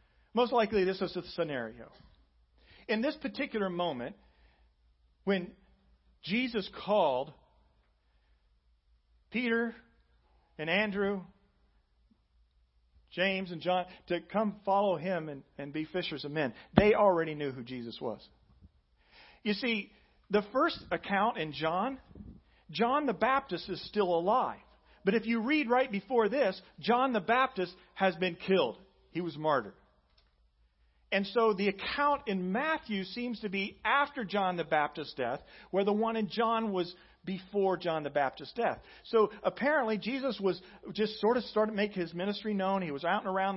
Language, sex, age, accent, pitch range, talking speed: English, male, 40-59, American, 170-220 Hz, 145 wpm